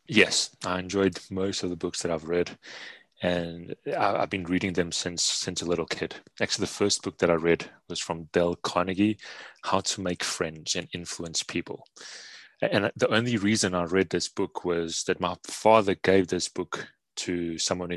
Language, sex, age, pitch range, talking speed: English, male, 30-49, 85-95 Hz, 185 wpm